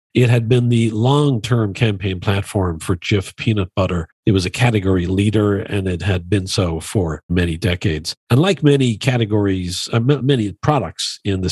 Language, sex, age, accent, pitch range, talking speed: English, male, 50-69, American, 95-120 Hz, 170 wpm